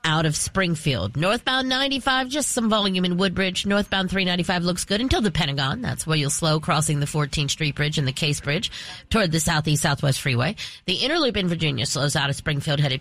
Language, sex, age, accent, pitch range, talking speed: English, female, 30-49, American, 150-195 Hz, 205 wpm